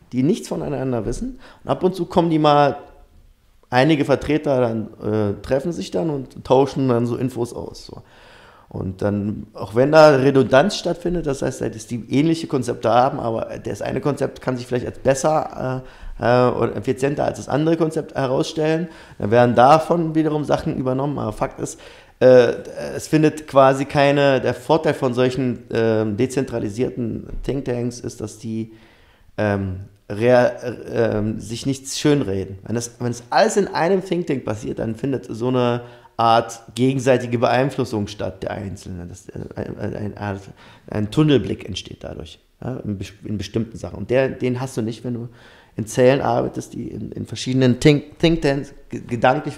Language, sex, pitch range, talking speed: German, male, 110-140 Hz, 160 wpm